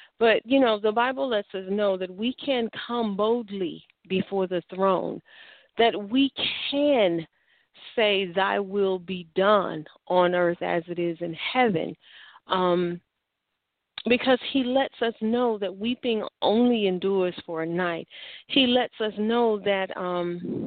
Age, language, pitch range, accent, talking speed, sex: 40-59, English, 185-240 Hz, American, 145 wpm, female